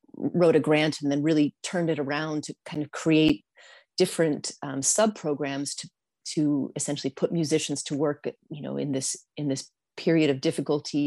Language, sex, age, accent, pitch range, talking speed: English, female, 30-49, American, 145-175 Hz, 175 wpm